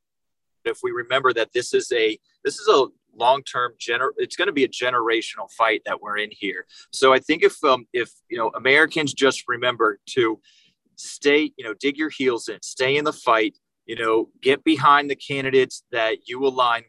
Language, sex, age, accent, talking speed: English, male, 30-49, American, 195 wpm